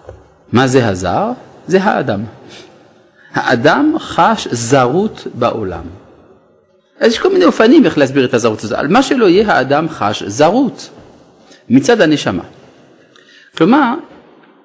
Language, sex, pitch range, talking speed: Hebrew, male, 130-215 Hz, 115 wpm